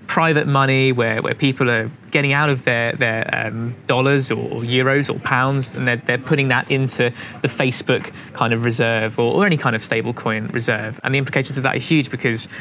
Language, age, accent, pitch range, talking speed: English, 20-39, British, 115-135 Hz, 215 wpm